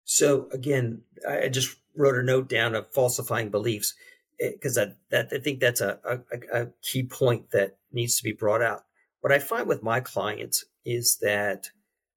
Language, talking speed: English, 180 wpm